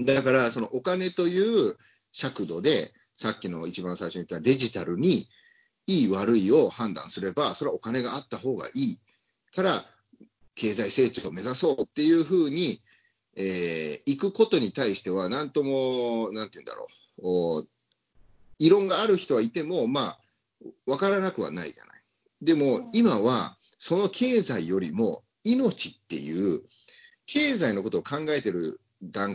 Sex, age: male, 40-59